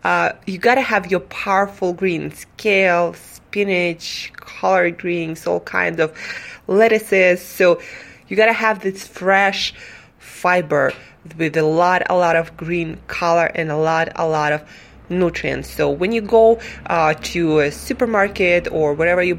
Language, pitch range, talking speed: English, 160-190 Hz, 155 wpm